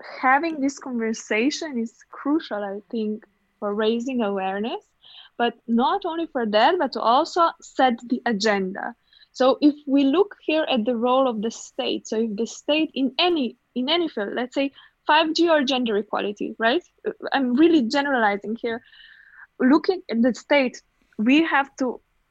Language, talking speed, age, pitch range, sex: English, 160 wpm, 20-39, 230-295 Hz, female